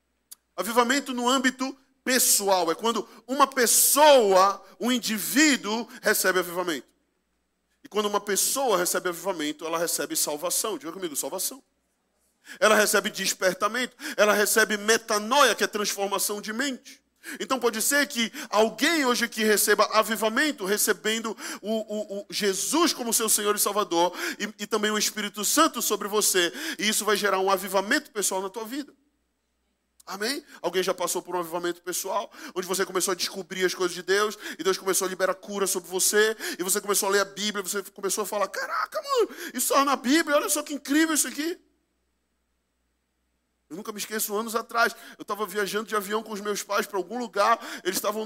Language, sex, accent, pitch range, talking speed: Portuguese, male, Brazilian, 195-245 Hz, 170 wpm